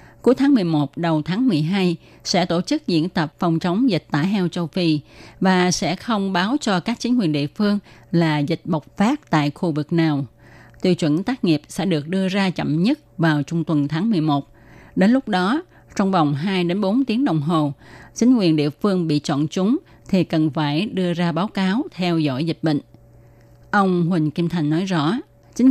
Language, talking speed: Vietnamese, 200 wpm